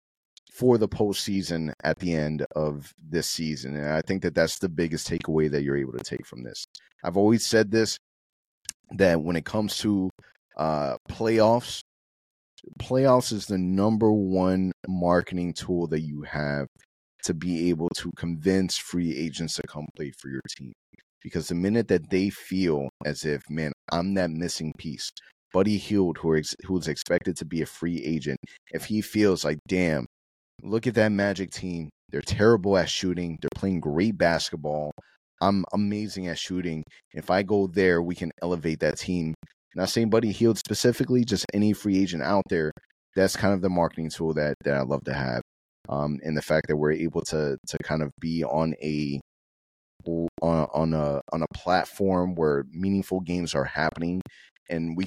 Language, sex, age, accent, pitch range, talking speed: English, male, 30-49, American, 80-95 Hz, 175 wpm